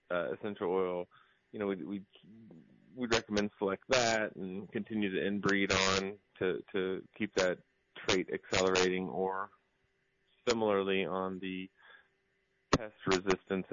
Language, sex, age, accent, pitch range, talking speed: English, male, 30-49, American, 95-115 Hz, 120 wpm